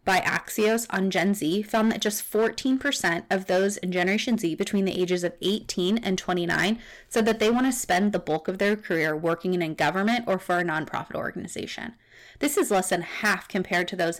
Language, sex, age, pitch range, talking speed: English, female, 20-39, 180-220 Hz, 205 wpm